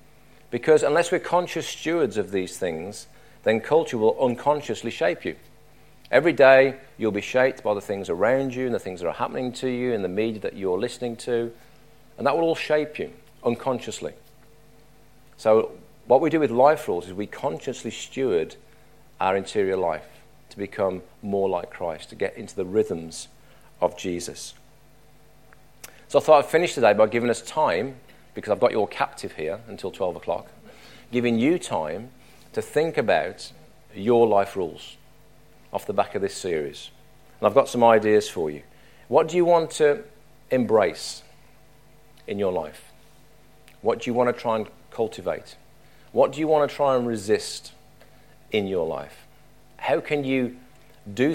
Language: English